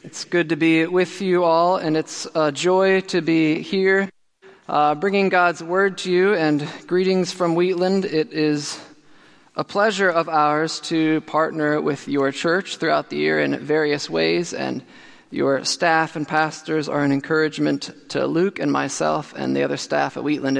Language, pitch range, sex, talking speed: English, 150-185 Hz, male, 170 wpm